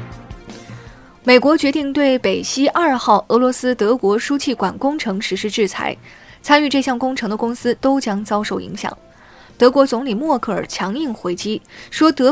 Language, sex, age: Chinese, female, 20-39